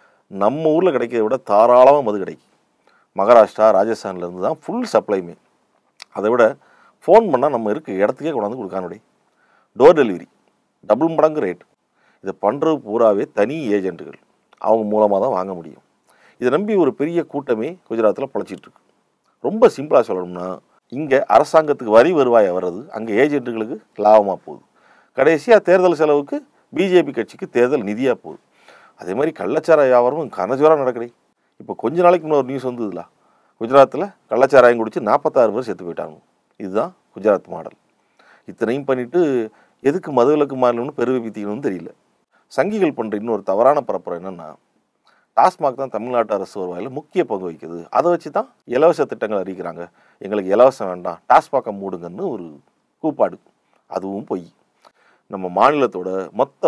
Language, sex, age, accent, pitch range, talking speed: Tamil, male, 50-69, native, 100-145 Hz, 130 wpm